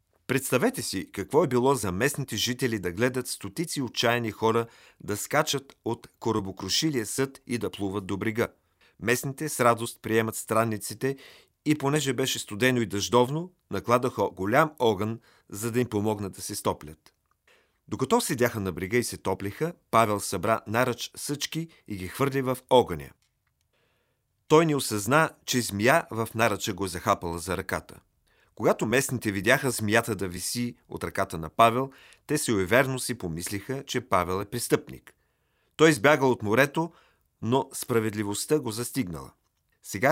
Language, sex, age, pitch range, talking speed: Bulgarian, male, 40-59, 105-135 Hz, 150 wpm